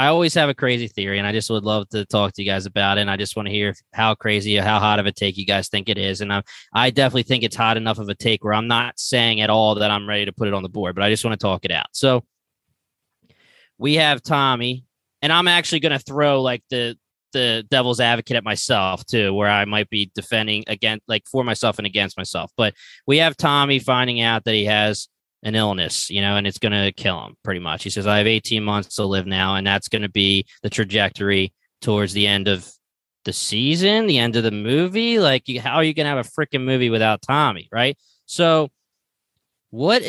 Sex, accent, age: male, American, 20-39